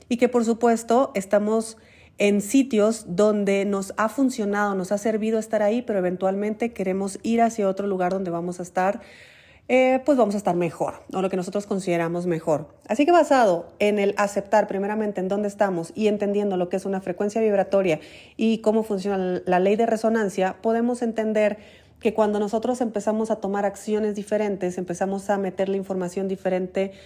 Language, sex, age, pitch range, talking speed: Spanish, female, 30-49, 195-225 Hz, 175 wpm